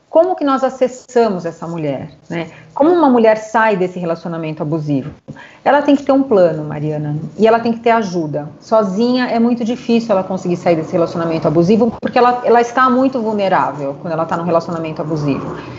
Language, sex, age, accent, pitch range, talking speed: Portuguese, female, 30-49, Brazilian, 175-230 Hz, 185 wpm